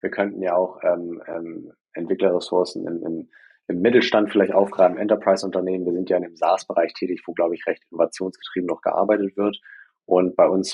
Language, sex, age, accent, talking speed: German, male, 30-49, German, 170 wpm